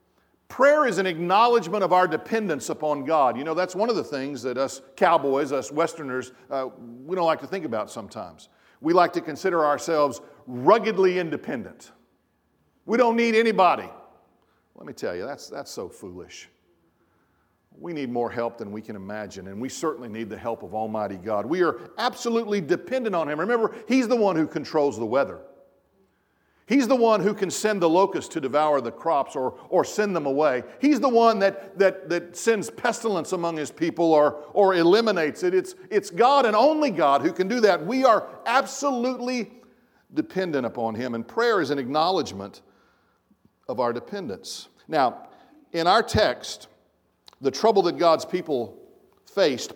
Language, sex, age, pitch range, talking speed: English, male, 50-69, 145-225 Hz, 175 wpm